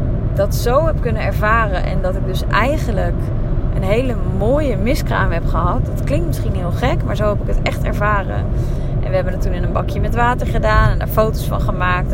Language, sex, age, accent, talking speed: Dutch, female, 20-39, Dutch, 215 wpm